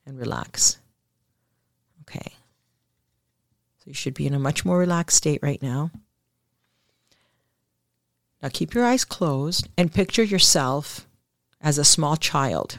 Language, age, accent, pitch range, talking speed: English, 40-59, American, 140-185 Hz, 125 wpm